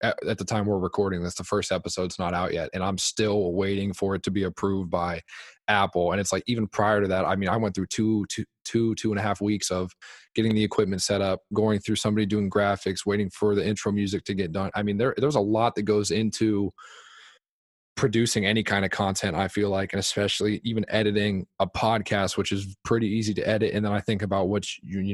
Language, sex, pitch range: English, male, 95-105 Hz